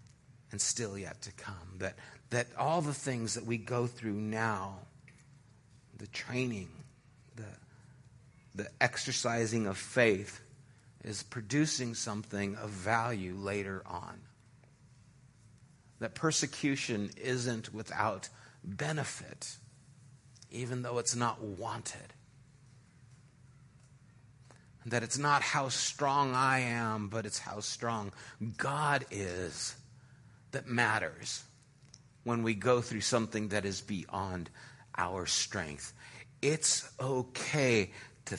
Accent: American